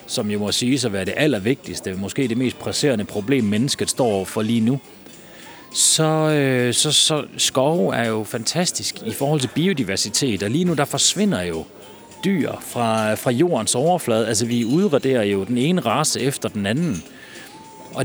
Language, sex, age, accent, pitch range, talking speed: Danish, male, 30-49, native, 120-160 Hz, 170 wpm